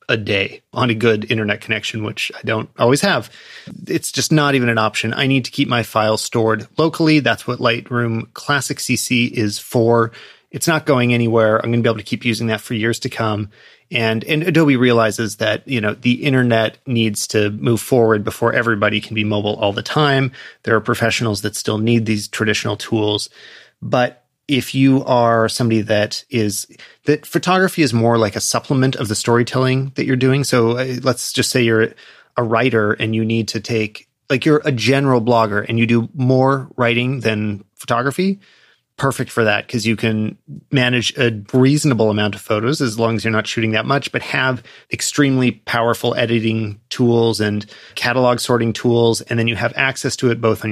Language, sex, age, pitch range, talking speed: English, male, 30-49, 110-130 Hz, 195 wpm